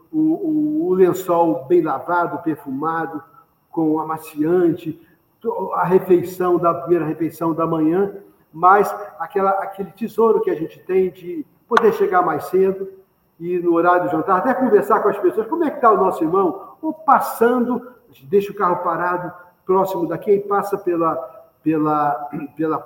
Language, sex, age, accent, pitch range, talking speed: Portuguese, male, 60-79, Brazilian, 165-225 Hz, 150 wpm